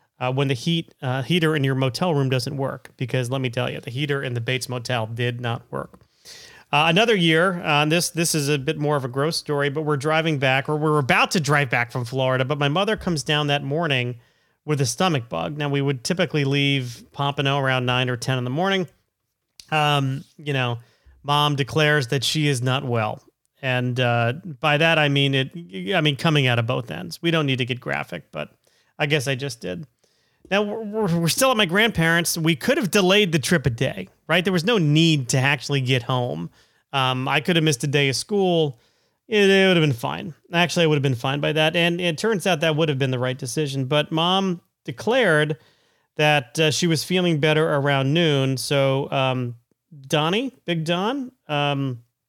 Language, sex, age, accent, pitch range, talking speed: English, male, 40-59, American, 135-170 Hz, 215 wpm